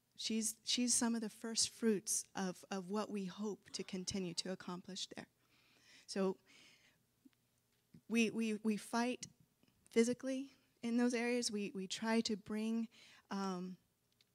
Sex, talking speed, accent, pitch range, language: female, 135 wpm, American, 185-220 Hz, English